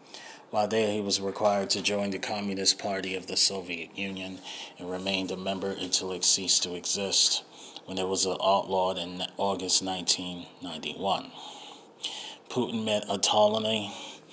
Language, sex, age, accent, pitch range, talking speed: English, male, 30-49, American, 95-105 Hz, 125 wpm